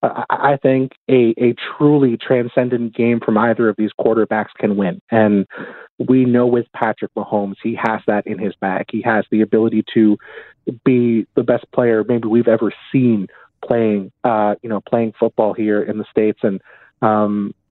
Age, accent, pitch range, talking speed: 30-49, American, 110-130 Hz, 175 wpm